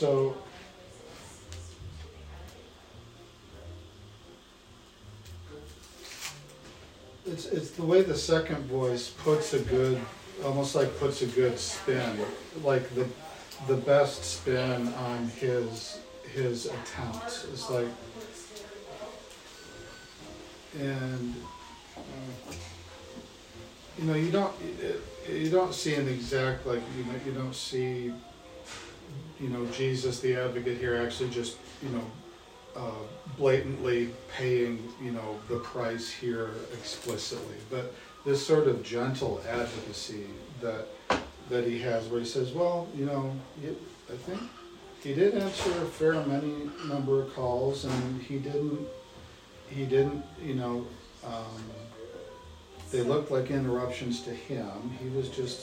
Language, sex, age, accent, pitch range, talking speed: English, male, 40-59, American, 115-135 Hz, 115 wpm